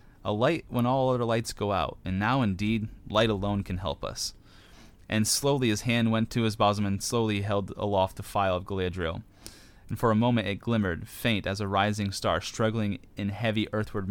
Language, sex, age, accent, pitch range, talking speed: English, male, 30-49, American, 95-115 Hz, 200 wpm